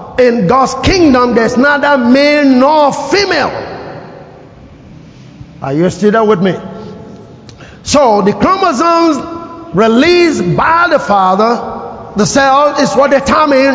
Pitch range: 215-280 Hz